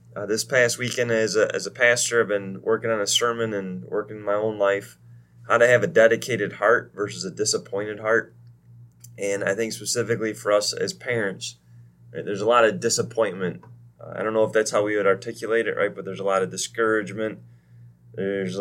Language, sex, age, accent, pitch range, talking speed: English, male, 20-39, American, 90-115 Hz, 195 wpm